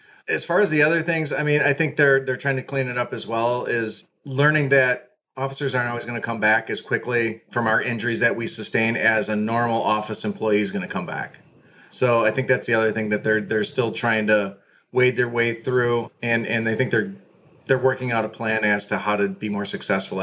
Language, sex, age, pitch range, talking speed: English, male, 30-49, 110-125 Hz, 240 wpm